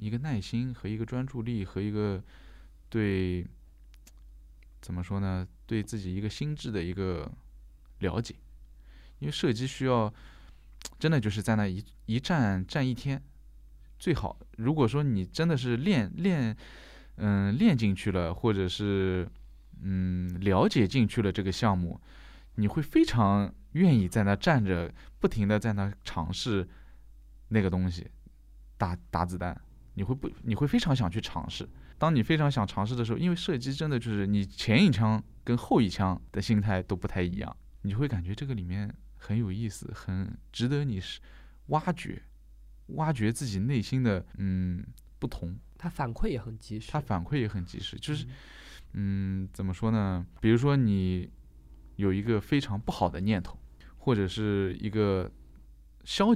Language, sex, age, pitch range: Chinese, male, 20-39, 90-120 Hz